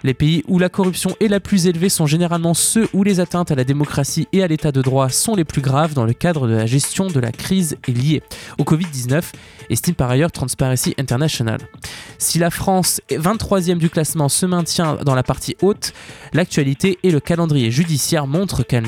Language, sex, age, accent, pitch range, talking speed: French, male, 20-39, French, 135-180 Hz, 205 wpm